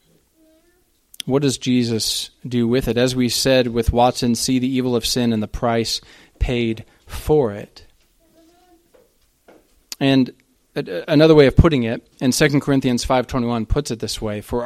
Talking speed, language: 150 wpm, English